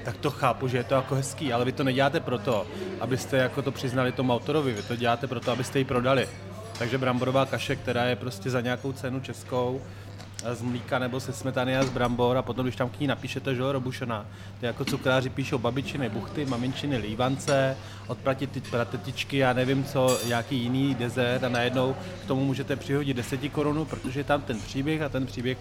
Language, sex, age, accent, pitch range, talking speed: Czech, male, 30-49, native, 120-140 Hz, 205 wpm